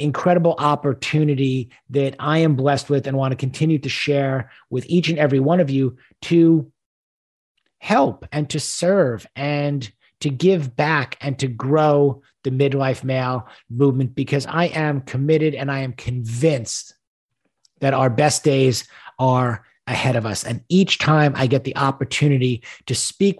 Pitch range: 125-150 Hz